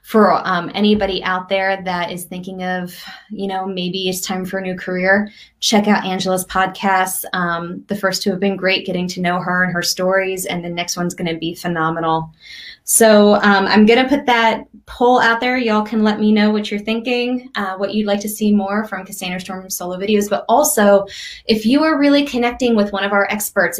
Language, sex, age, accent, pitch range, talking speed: English, female, 20-39, American, 180-210 Hz, 215 wpm